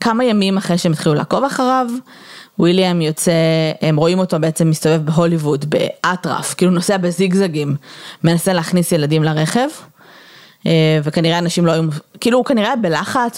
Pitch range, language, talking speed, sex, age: 165-225 Hz, Hebrew, 140 wpm, female, 20-39